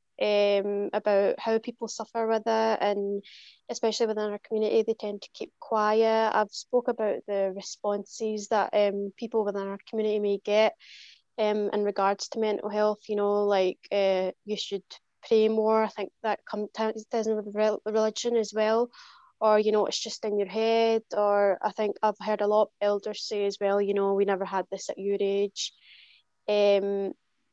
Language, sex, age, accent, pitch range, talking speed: English, female, 20-39, British, 205-225 Hz, 180 wpm